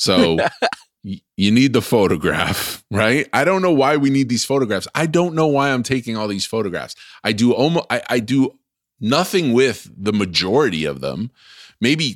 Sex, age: male, 30-49